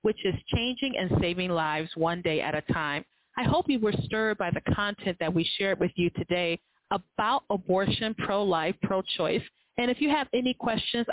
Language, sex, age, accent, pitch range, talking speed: English, female, 30-49, American, 175-230 Hz, 190 wpm